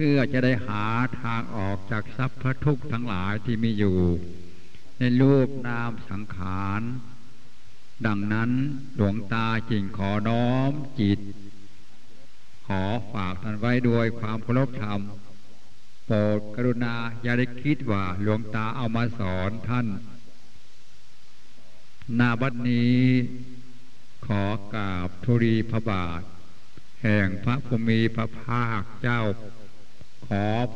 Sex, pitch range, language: male, 105-120 Hz, English